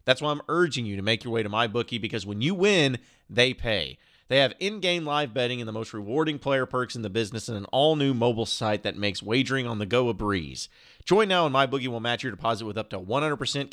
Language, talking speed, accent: English, 245 wpm, American